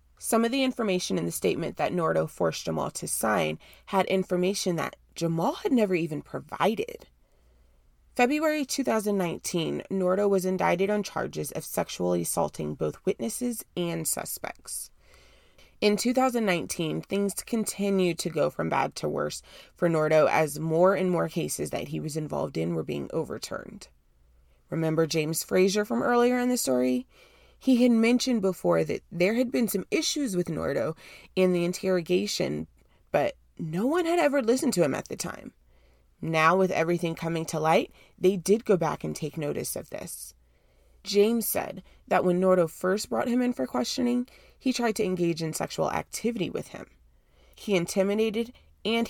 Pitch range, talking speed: 135-215 Hz, 160 wpm